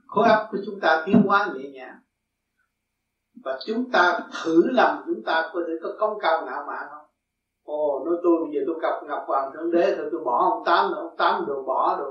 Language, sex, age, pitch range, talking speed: Vietnamese, male, 60-79, 160-225 Hz, 215 wpm